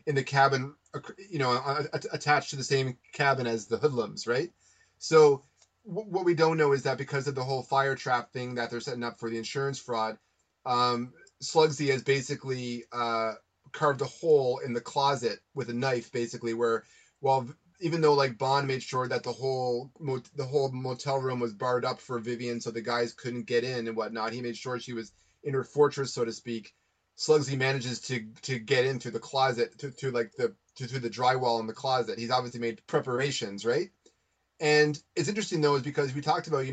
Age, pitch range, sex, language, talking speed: 30-49, 120-145 Hz, male, English, 200 wpm